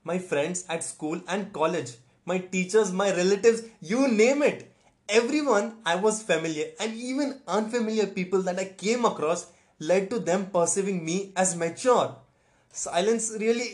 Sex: male